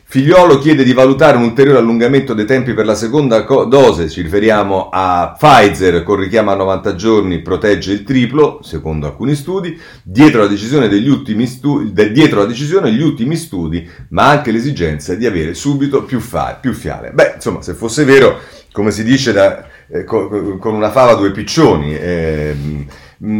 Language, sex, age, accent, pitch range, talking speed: Italian, male, 40-59, native, 95-140 Hz, 160 wpm